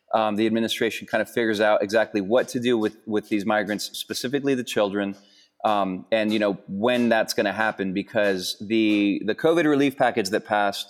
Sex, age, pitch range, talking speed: male, 30-49, 105-125 Hz, 195 wpm